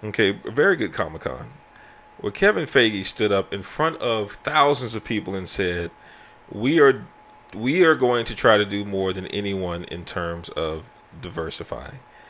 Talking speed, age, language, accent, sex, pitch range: 170 wpm, 40-59, English, American, male, 95-125 Hz